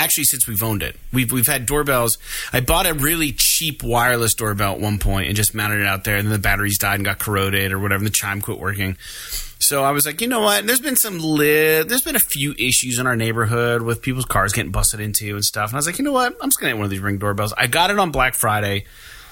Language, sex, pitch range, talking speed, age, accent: English, male, 105-155 Hz, 280 wpm, 30-49, American